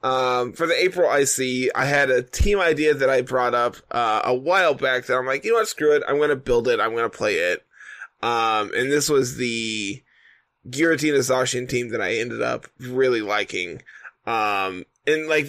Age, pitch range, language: 20-39, 125-155 Hz, English